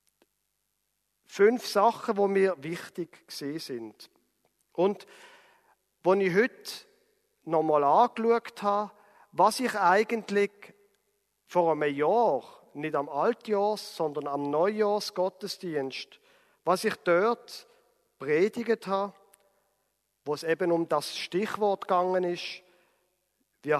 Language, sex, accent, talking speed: German, male, German, 100 wpm